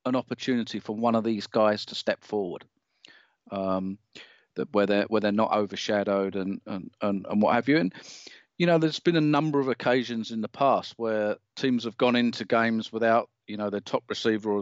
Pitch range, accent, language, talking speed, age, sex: 110-140 Hz, British, English, 205 wpm, 40-59, male